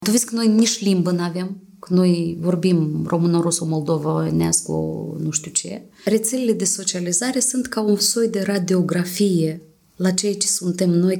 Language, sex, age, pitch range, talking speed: Romanian, female, 30-49, 160-205 Hz, 165 wpm